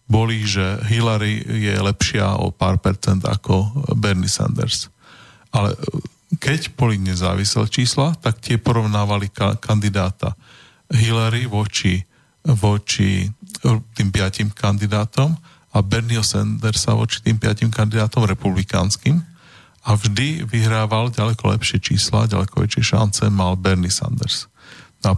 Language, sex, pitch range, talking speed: Slovak, male, 100-125 Hz, 110 wpm